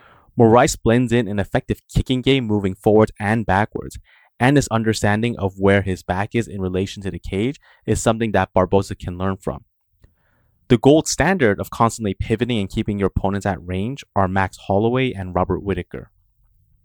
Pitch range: 95-120 Hz